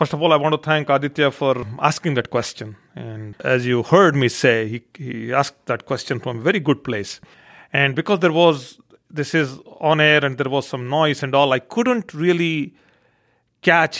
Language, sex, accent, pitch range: English, male, Indian, 120-150 Hz